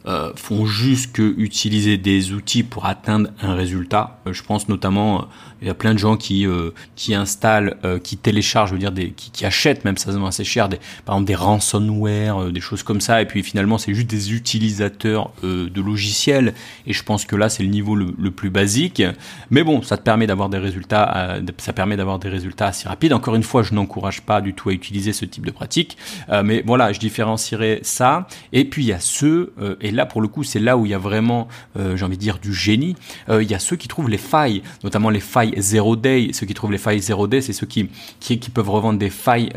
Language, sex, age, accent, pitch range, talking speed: French, male, 30-49, French, 100-115 Hz, 250 wpm